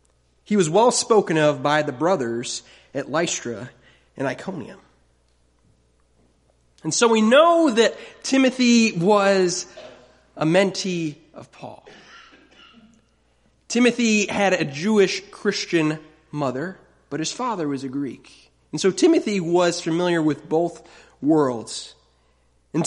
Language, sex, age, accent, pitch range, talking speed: English, male, 30-49, American, 125-195 Hz, 115 wpm